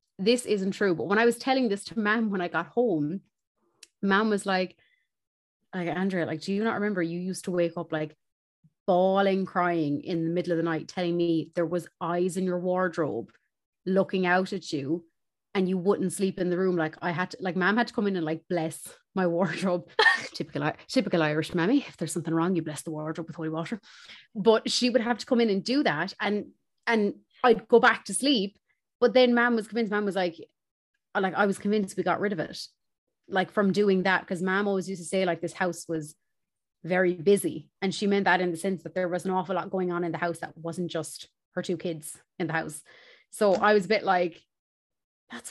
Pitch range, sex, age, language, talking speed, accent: 175-210 Hz, female, 30-49, English, 225 wpm, Irish